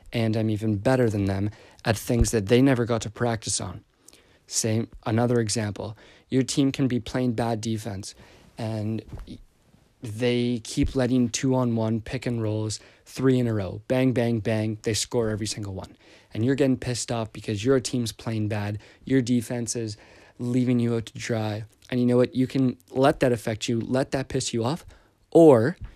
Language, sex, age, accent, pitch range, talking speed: English, male, 20-39, American, 110-130 Hz, 185 wpm